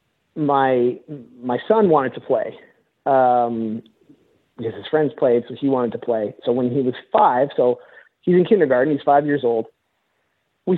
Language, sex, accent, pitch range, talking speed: English, male, American, 130-175 Hz, 165 wpm